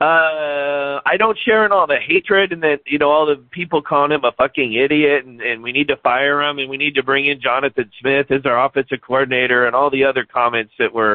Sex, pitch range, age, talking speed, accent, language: male, 135-170 Hz, 50-69, 250 wpm, American, English